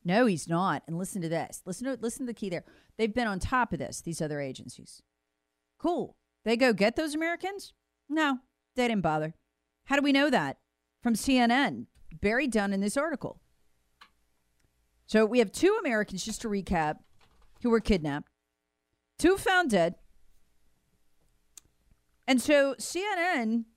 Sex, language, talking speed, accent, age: female, English, 155 wpm, American, 40-59